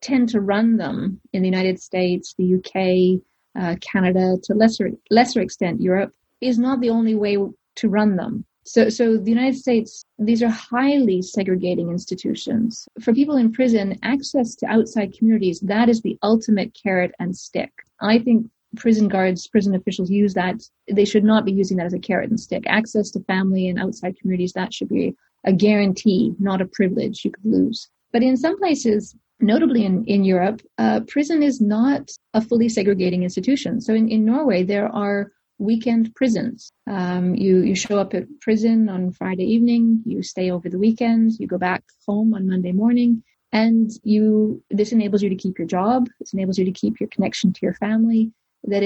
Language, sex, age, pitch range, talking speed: English, female, 30-49, 190-230 Hz, 185 wpm